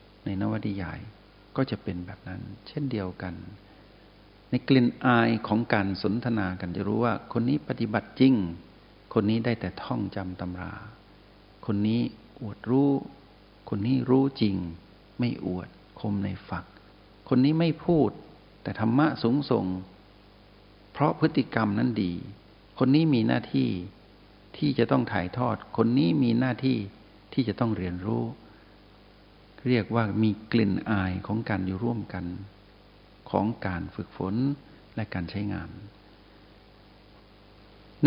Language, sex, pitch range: Thai, male, 95-115 Hz